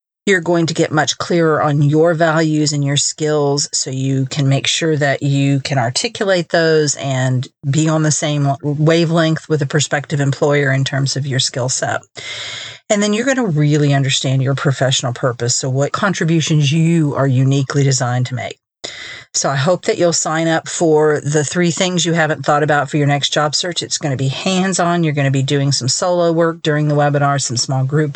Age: 40-59